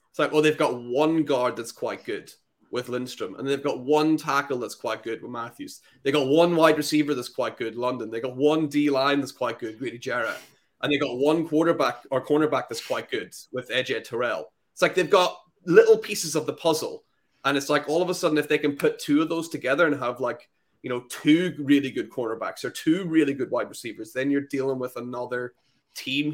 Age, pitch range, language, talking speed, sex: 20-39, 125-155 Hz, English, 230 wpm, male